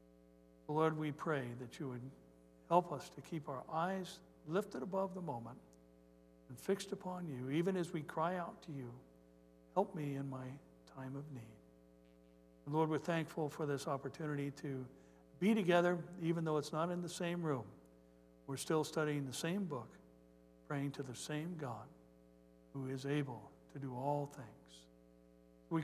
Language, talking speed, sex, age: English, 165 wpm, male, 60-79